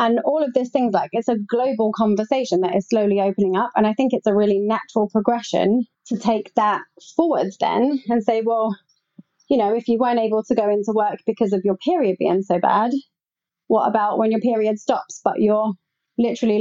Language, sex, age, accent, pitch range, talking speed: English, female, 30-49, British, 195-230 Hz, 205 wpm